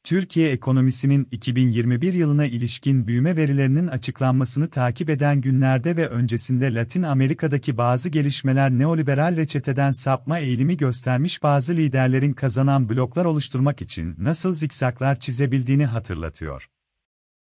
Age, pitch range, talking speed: 40-59, 120-150 Hz, 110 wpm